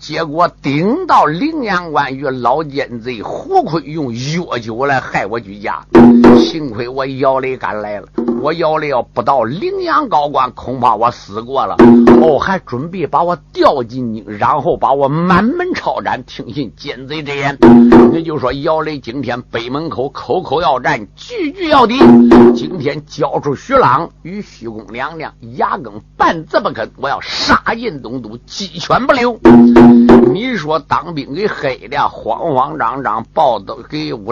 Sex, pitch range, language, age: male, 120-165 Hz, Chinese, 50-69